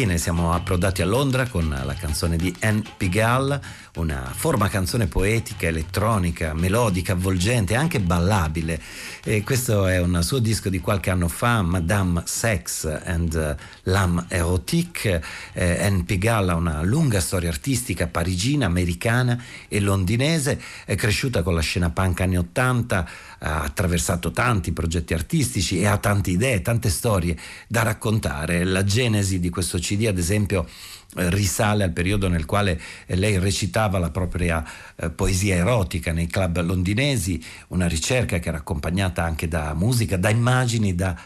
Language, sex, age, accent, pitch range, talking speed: Italian, male, 50-69, native, 90-115 Hz, 145 wpm